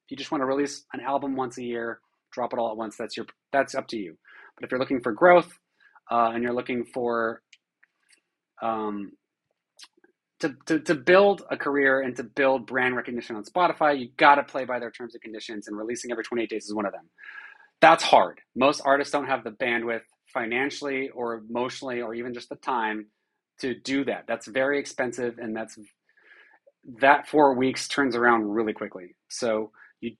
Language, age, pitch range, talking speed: English, 30-49, 115-140 Hz, 195 wpm